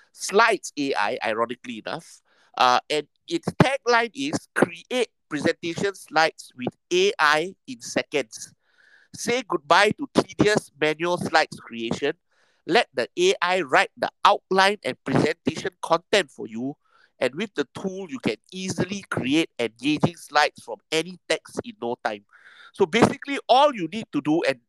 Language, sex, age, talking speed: English, male, 50-69, 140 wpm